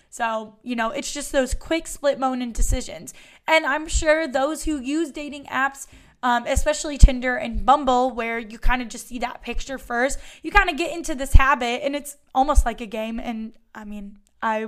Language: English